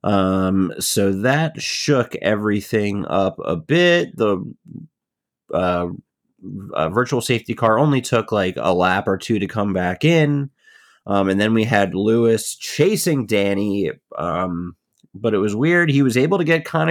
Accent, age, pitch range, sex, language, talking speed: American, 30-49, 100-130 Hz, male, English, 155 wpm